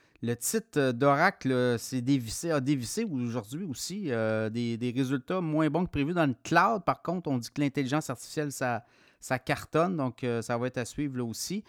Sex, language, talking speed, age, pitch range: male, French, 200 wpm, 30-49, 125-165 Hz